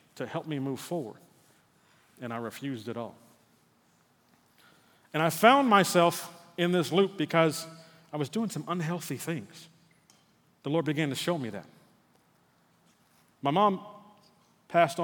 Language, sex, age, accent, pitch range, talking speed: English, male, 40-59, American, 130-170 Hz, 135 wpm